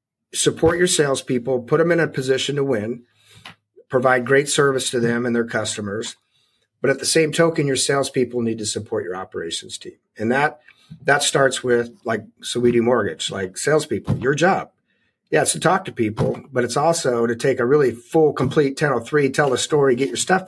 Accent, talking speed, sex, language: American, 195 wpm, male, English